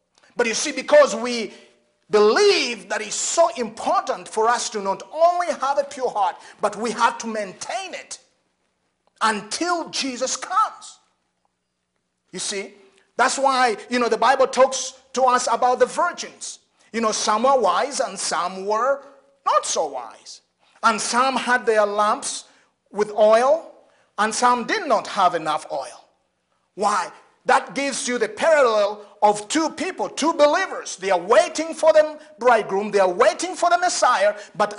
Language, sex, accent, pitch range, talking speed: English, male, Nigerian, 225-320 Hz, 155 wpm